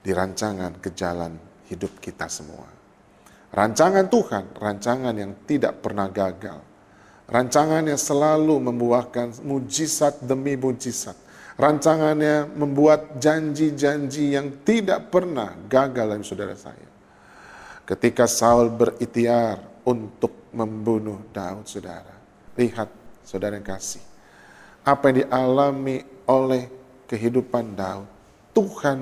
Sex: male